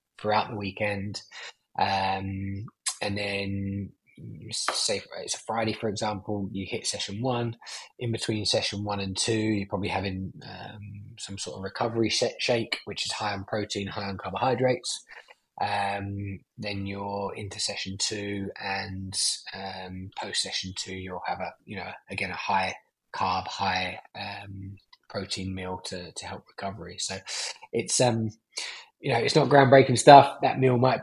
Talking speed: 150 wpm